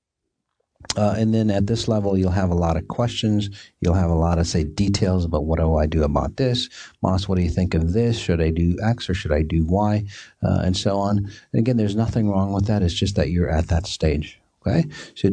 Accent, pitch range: American, 85-110 Hz